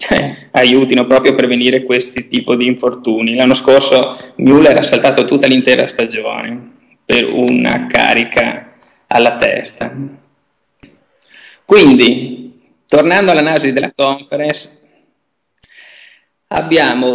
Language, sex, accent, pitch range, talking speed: Italian, male, native, 125-140 Hz, 100 wpm